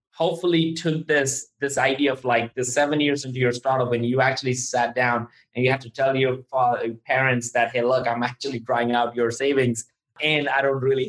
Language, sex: English, male